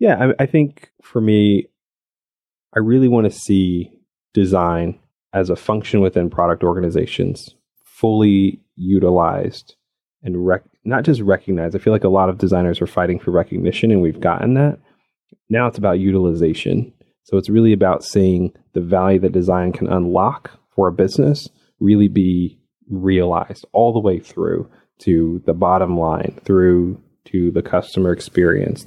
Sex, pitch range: male, 90-105 Hz